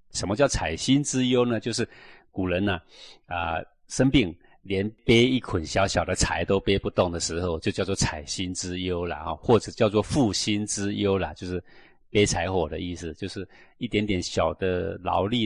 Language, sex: Chinese, male